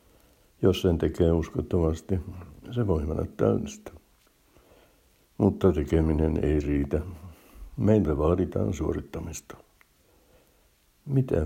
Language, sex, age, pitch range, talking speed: Finnish, male, 60-79, 80-100 Hz, 85 wpm